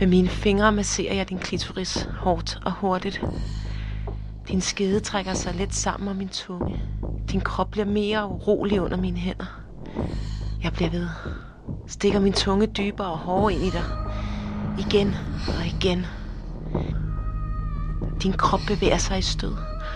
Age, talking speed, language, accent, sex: 30-49, 145 wpm, Danish, native, female